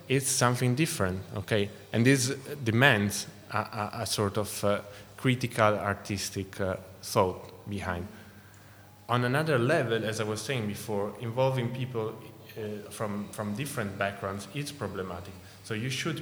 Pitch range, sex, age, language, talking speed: 105-130 Hz, male, 30-49, English, 140 wpm